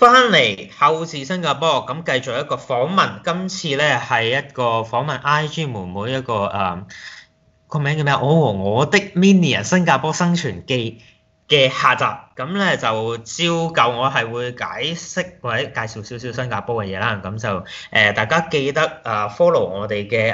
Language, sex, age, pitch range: Chinese, male, 20-39, 110-150 Hz